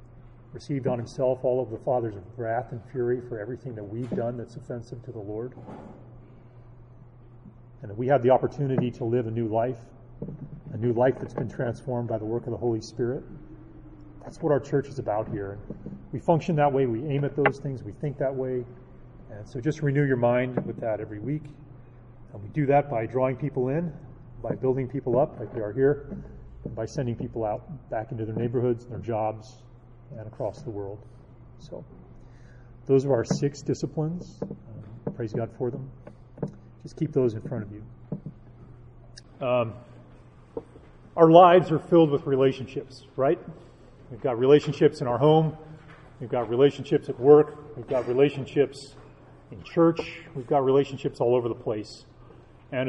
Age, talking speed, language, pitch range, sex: 30-49, 175 wpm, English, 120-140 Hz, male